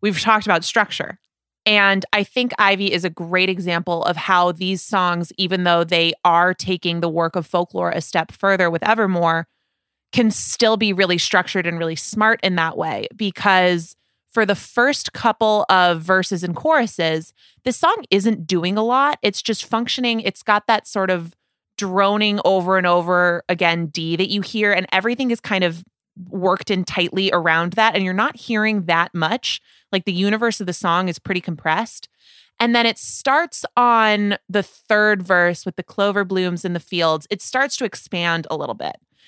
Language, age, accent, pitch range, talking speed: English, 20-39, American, 175-220 Hz, 185 wpm